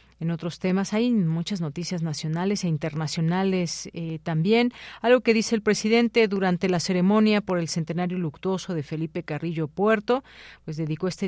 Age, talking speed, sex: 40-59, 160 wpm, female